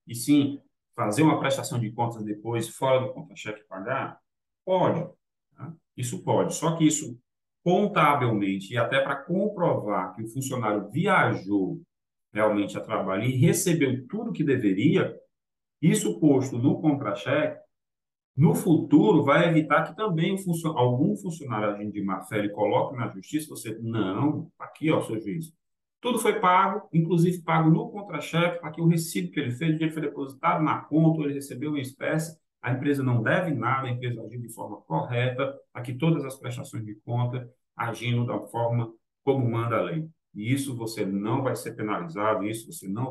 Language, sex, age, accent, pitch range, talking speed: Portuguese, male, 40-59, Brazilian, 115-160 Hz, 165 wpm